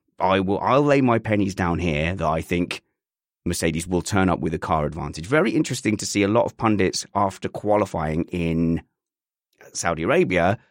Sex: male